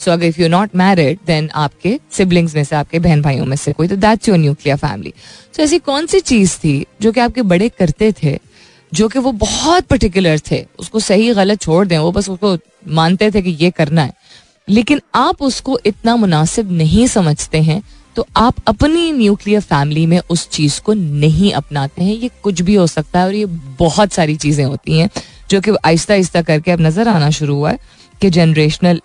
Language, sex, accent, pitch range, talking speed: Hindi, female, native, 155-210 Hz, 200 wpm